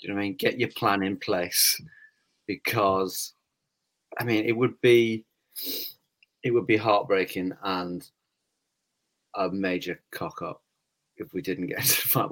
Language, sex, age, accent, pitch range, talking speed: English, male, 30-49, British, 95-135 Hz, 155 wpm